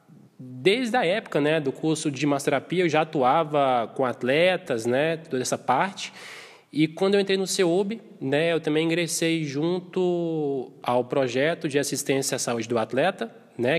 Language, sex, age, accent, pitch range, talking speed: Portuguese, male, 20-39, Brazilian, 130-170 Hz, 160 wpm